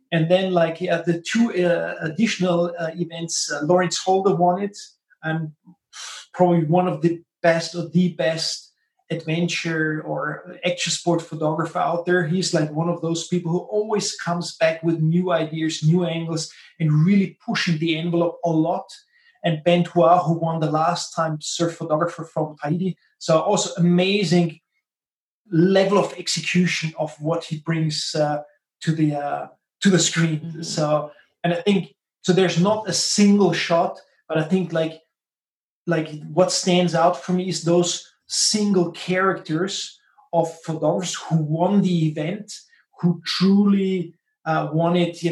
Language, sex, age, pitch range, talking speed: English, male, 30-49, 160-180 Hz, 155 wpm